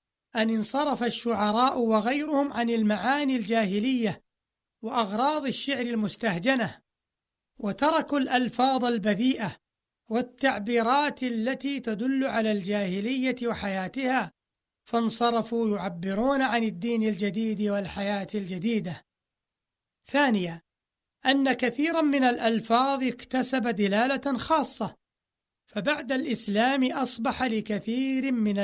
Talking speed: 80 wpm